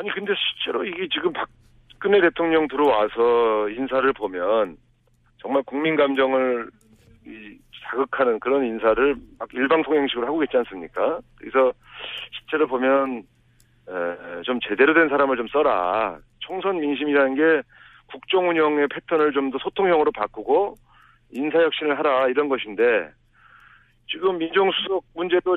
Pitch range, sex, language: 120-165 Hz, male, Korean